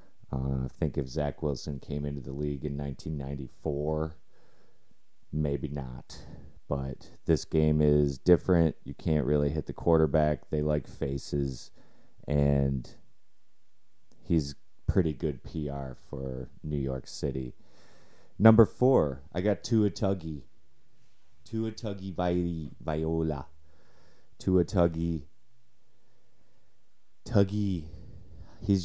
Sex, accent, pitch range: male, American, 70-95 Hz